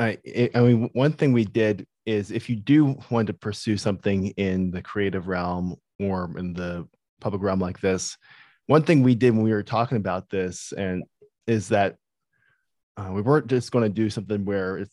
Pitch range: 90-115 Hz